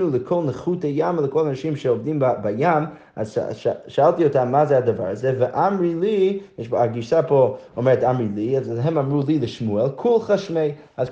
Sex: male